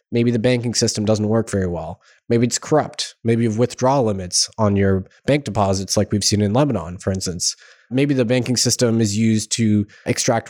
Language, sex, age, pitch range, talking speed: English, male, 20-39, 105-125 Hz, 200 wpm